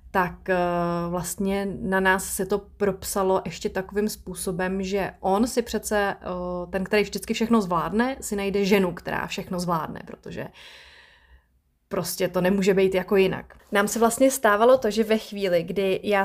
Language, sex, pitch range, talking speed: Czech, female, 190-230 Hz, 155 wpm